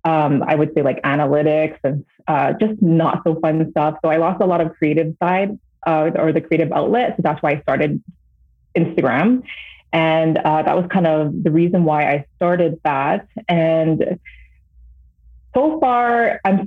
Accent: American